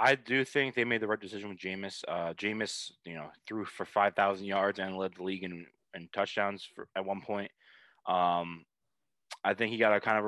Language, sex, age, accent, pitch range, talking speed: English, male, 20-39, American, 95-130 Hz, 230 wpm